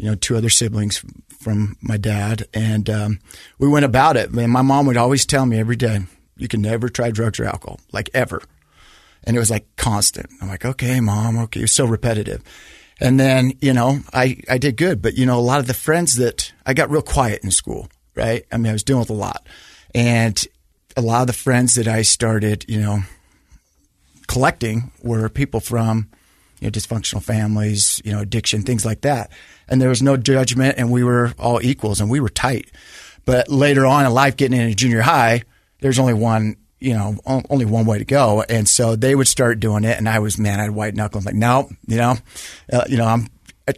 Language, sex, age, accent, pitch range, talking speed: English, male, 40-59, American, 105-130 Hz, 220 wpm